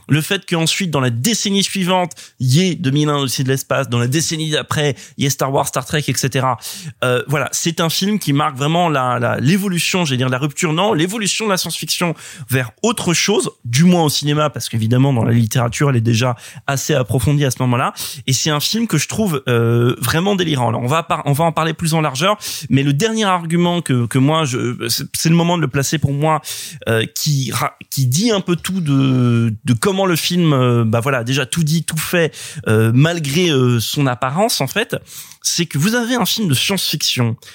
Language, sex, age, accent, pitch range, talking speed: French, male, 20-39, French, 130-175 Hz, 215 wpm